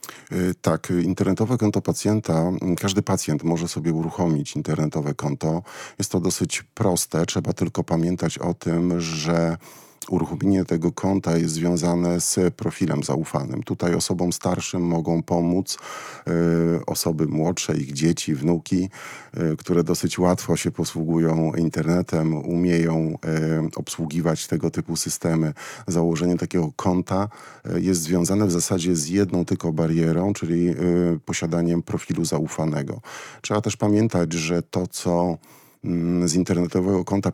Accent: native